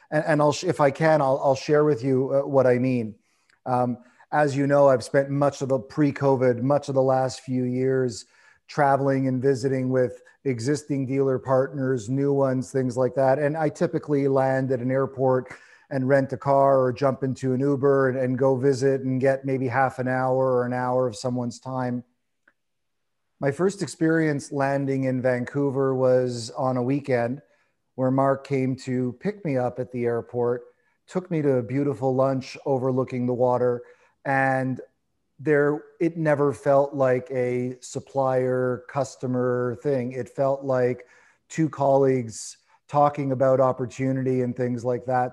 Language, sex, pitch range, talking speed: English, male, 125-140 Hz, 165 wpm